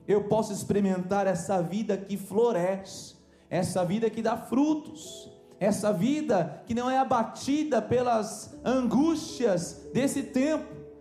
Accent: Brazilian